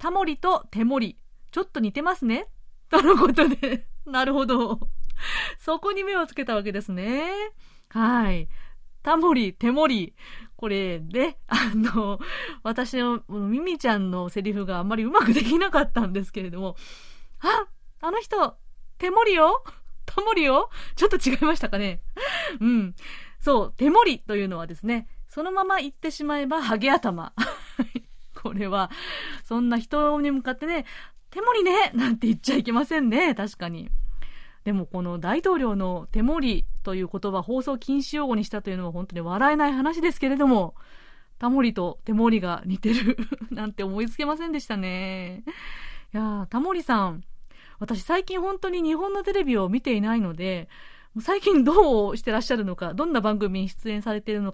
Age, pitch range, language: 30-49, 205-310 Hz, Japanese